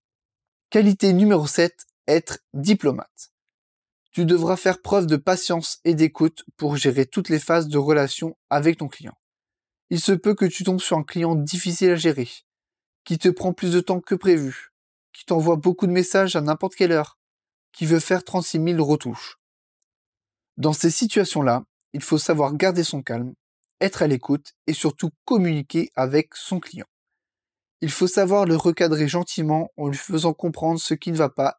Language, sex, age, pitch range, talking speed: French, male, 20-39, 150-180 Hz, 175 wpm